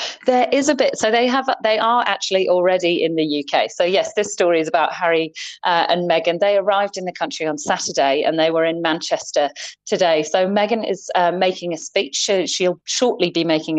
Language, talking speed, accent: English, 215 wpm, British